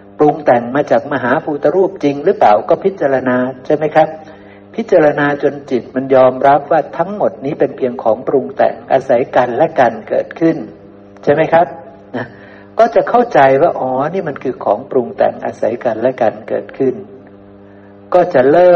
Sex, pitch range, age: male, 100-145 Hz, 60-79